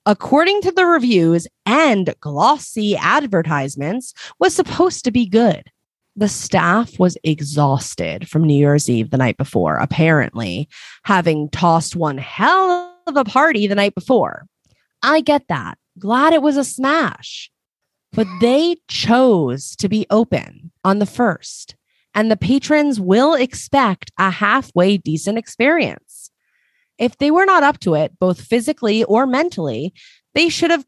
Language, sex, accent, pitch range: English, female, American, 160-265 Hz